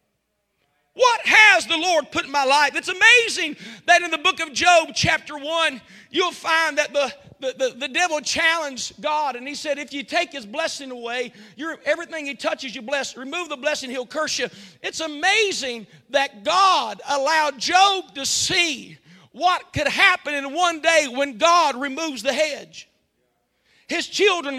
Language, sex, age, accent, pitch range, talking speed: English, male, 40-59, American, 275-360 Hz, 165 wpm